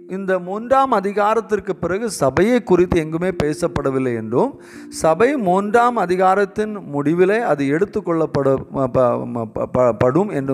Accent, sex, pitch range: native, male, 125-180 Hz